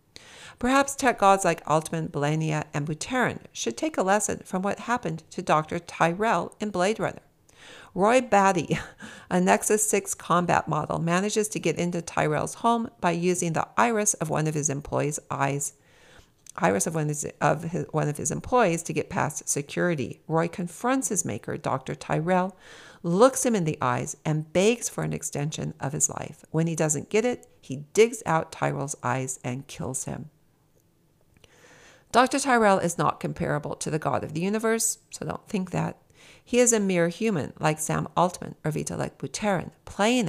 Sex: female